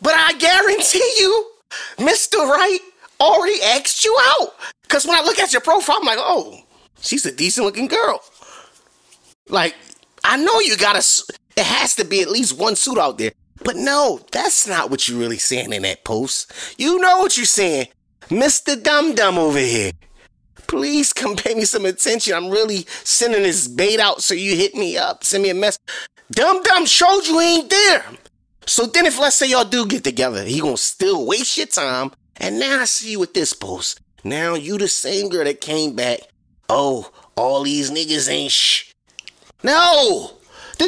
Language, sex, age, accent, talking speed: English, male, 30-49, American, 190 wpm